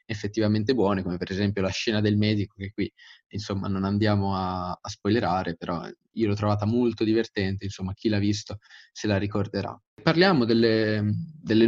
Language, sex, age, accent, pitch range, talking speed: Italian, male, 20-39, native, 100-120 Hz, 170 wpm